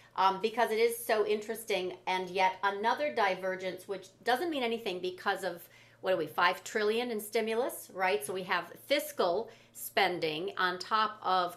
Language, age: English, 40-59